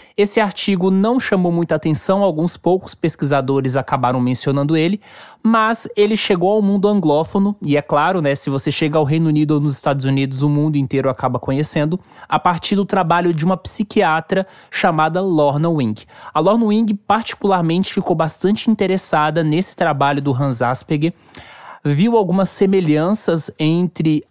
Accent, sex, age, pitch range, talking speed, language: Brazilian, male, 20-39, 145-200 Hz, 155 wpm, Portuguese